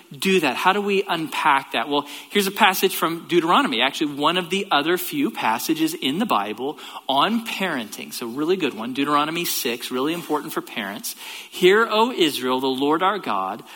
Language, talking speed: English, 185 wpm